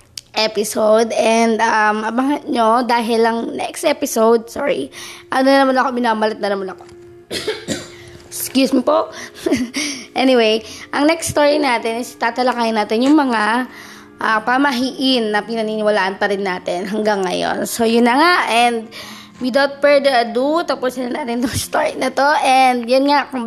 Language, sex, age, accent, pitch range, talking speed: Filipino, female, 20-39, native, 215-275 Hz, 145 wpm